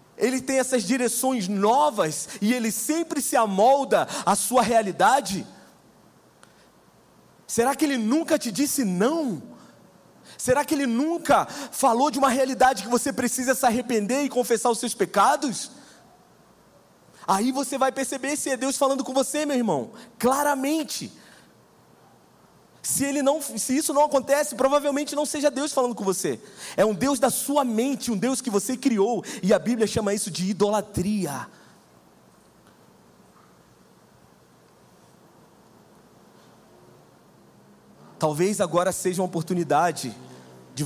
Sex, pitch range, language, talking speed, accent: male, 165-270 Hz, Portuguese, 130 wpm, Brazilian